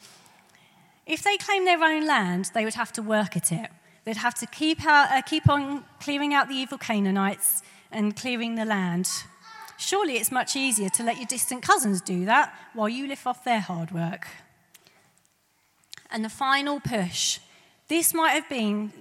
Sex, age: female, 30-49